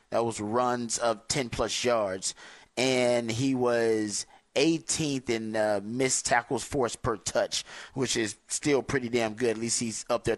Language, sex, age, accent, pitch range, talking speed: English, male, 30-49, American, 115-130 Hz, 160 wpm